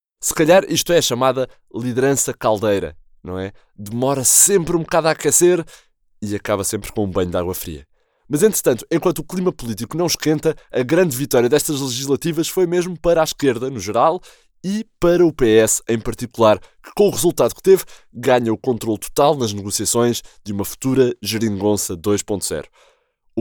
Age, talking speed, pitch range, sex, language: 20-39, 175 wpm, 105-160 Hz, male, Portuguese